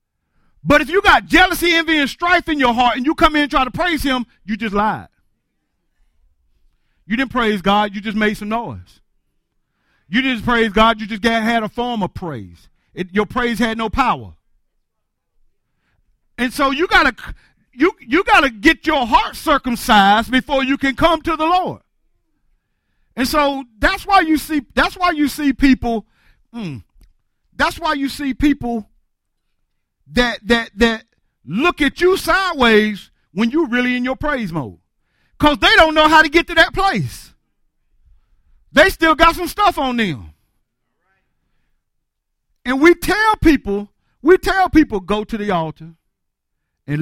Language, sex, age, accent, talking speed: English, male, 50-69, American, 165 wpm